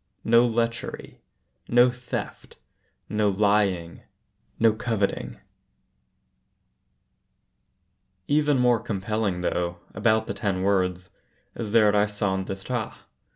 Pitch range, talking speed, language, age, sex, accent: 95-120 Hz, 90 wpm, English, 20-39, male, American